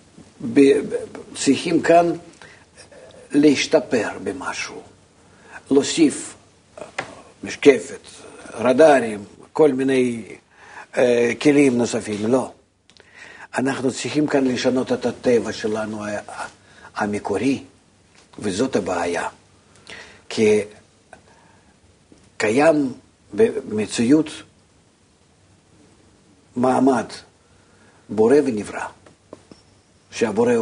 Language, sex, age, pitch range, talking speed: Hebrew, male, 50-69, 105-155 Hz, 60 wpm